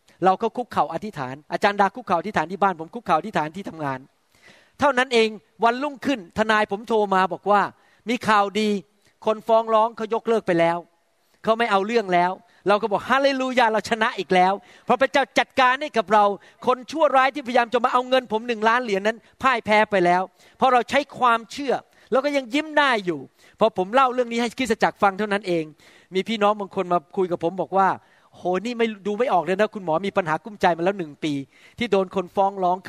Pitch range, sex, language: 180-235 Hz, male, Thai